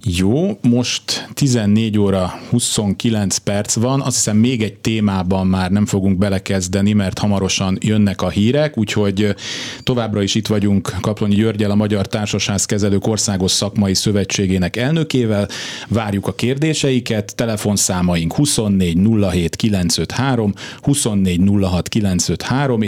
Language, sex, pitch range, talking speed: Hungarian, male, 100-120 Hz, 110 wpm